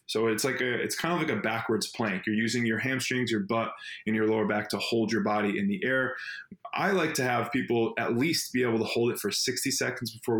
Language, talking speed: English, 255 wpm